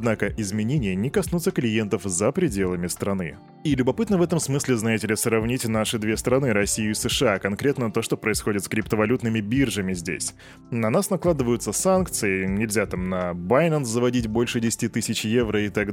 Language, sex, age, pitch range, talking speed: Russian, male, 20-39, 105-145 Hz, 170 wpm